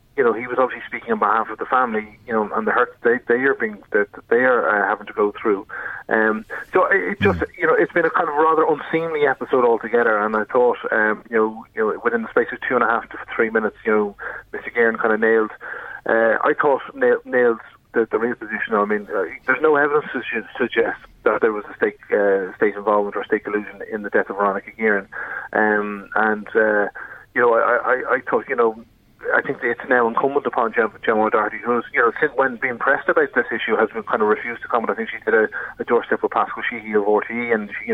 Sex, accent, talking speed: male, Irish, 245 wpm